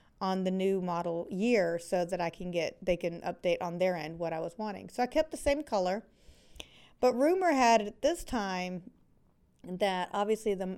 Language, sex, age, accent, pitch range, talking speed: English, female, 40-59, American, 180-220 Hz, 195 wpm